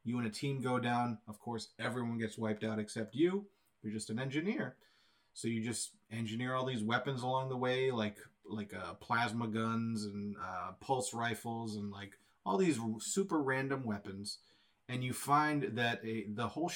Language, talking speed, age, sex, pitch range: English, 185 wpm, 30-49, male, 105-120 Hz